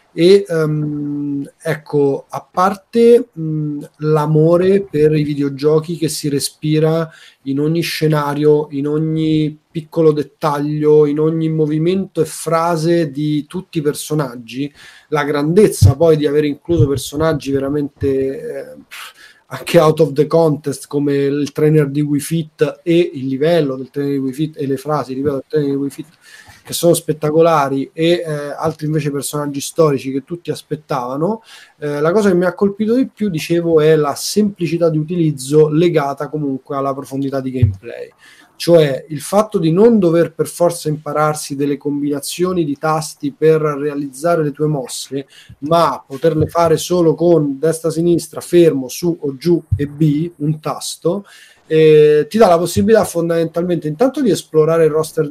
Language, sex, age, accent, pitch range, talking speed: Italian, male, 30-49, native, 145-165 Hz, 150 wpm